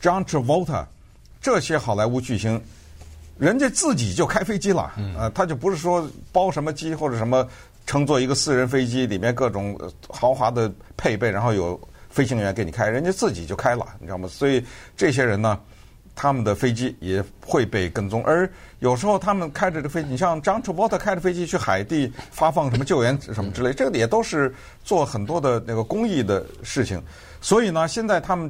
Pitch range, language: 105-150 Hz, Chinese